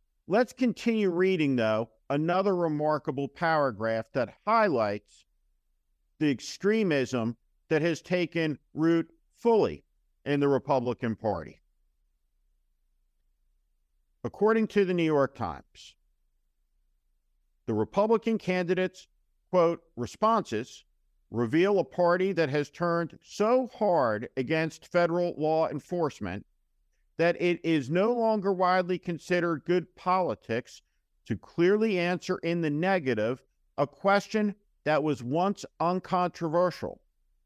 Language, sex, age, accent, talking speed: English, male, 50-69, American, 105 wpm